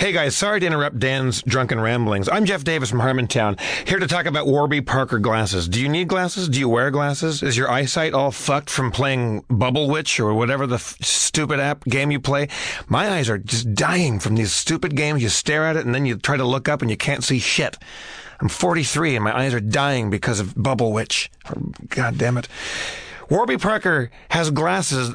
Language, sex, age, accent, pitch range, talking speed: English, male, 40-59, American, 125-160 Hz, 210 wpm